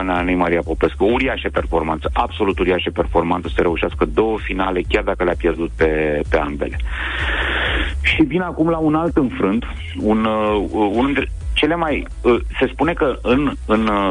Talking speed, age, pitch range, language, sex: 155 wpm, 30-49, 80-110 Hz, Romanian, male